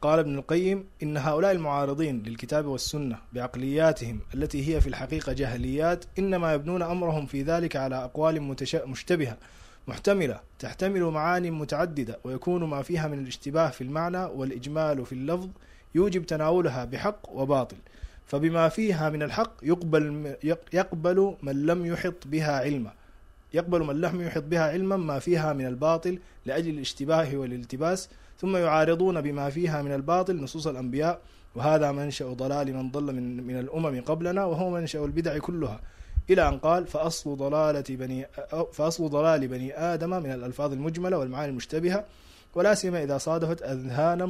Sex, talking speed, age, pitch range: male, 140 wpm, 20-39, 135-170 Hz